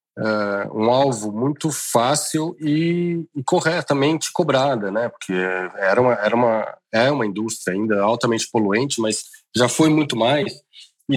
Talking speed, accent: 145 wpm, Brazilian